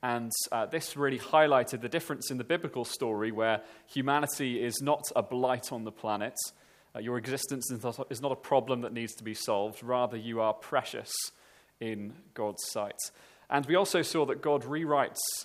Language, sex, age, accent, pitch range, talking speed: English, male, 30-49, British, 110-145 Hz, 180 wpm